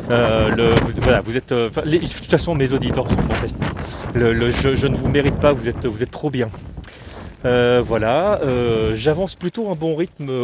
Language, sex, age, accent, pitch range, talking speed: French, male, 40-59, French, 115-150 Hz, 205 wpm